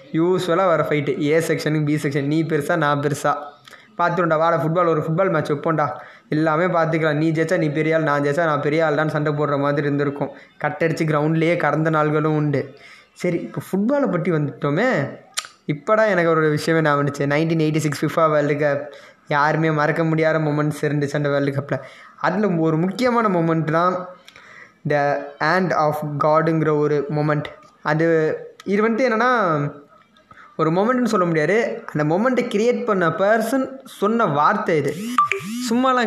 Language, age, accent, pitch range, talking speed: Tamil, 20-39, native, 150-185 Hz, 155 wpm